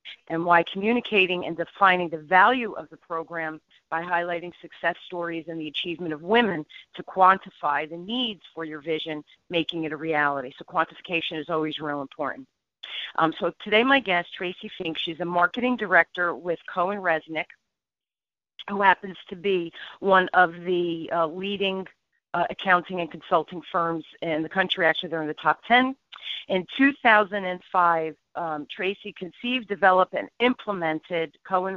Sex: female